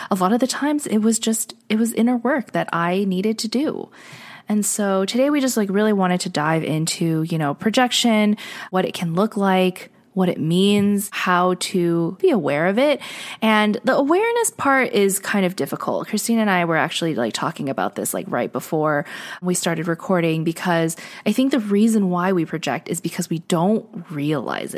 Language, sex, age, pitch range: English, female, 20-39, 175-220 Hz